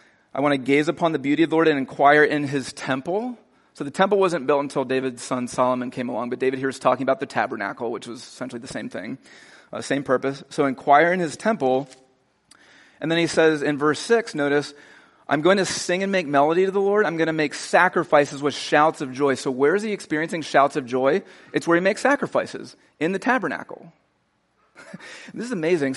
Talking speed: 215 wpm